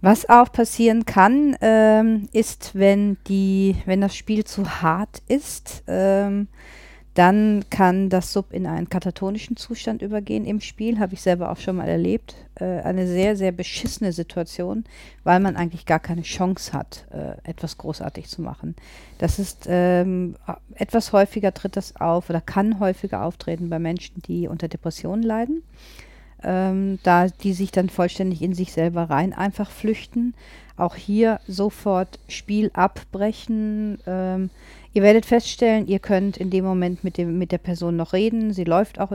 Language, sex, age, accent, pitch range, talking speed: German, female, 40-59, German, 175-205 Hz, 160 wpm